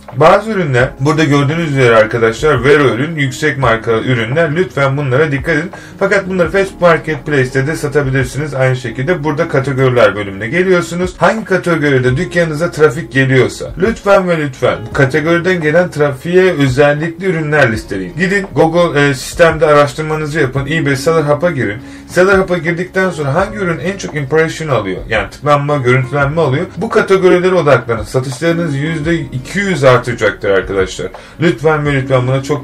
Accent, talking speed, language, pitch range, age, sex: native, 145 wpm, Turkish, 130-170 Hz, 30-49, male